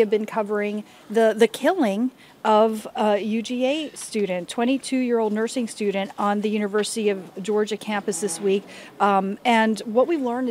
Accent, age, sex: American, 40-59, female